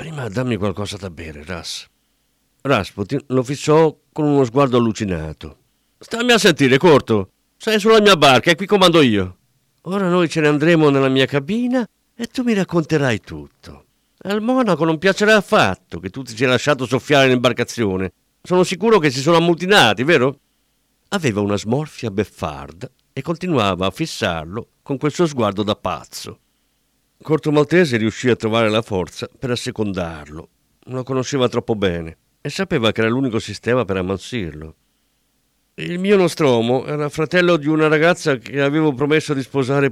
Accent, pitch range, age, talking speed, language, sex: native, 100-150 Hz, 50-69, 160 wpm, Italian, male